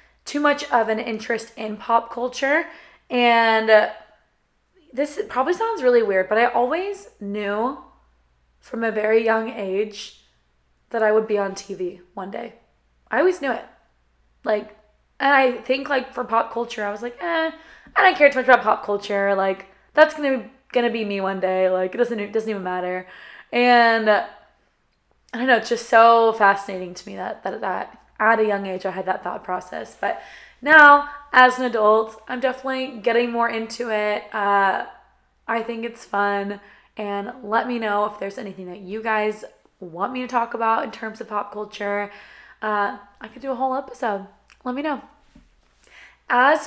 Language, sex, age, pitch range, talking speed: English, female, 20-39, 205-255 Hz, 185 wpm